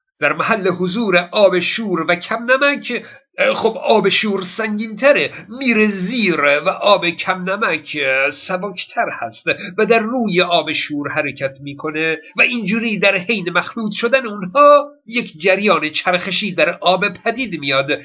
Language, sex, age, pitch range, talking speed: Persian, male, 50-69, 170-220 Hz, 140 wpm